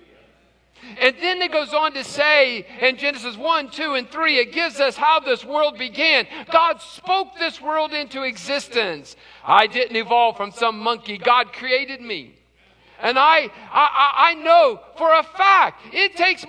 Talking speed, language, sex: 165 wpm, English, male